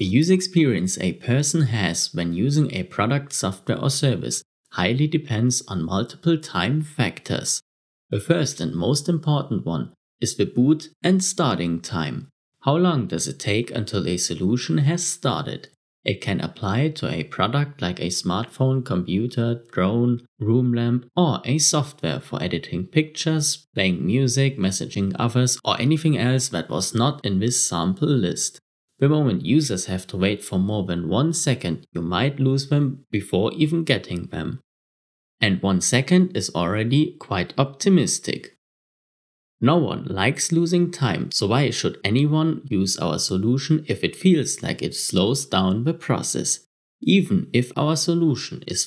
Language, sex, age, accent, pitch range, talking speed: English, male, 30-49, German, 100-155 Hz, 155 wpm